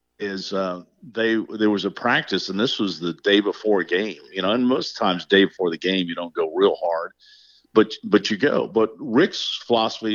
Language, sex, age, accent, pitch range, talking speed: English, male, 50-69, American, 90-115 Hz, 215 wpm